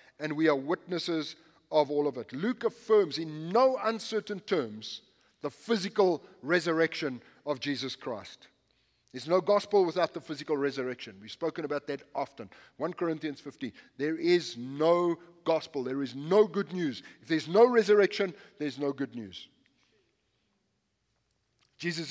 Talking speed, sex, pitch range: 145 wpm, male, 155-210 Hz